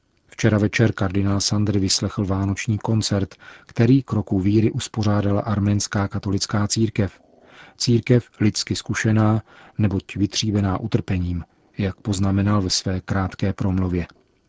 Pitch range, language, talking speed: 100-115 Hz, Czech, 110 wpm